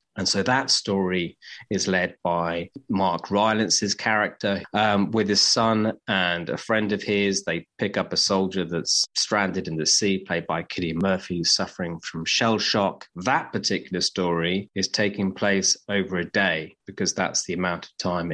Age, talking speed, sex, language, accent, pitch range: 30-49, 170 wpm, male, English, British, 90-105 Hz